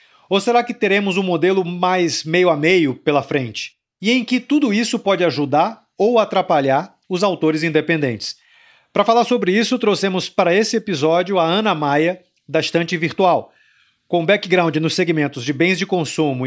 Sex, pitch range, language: male, 155-195 Hz, Portuguese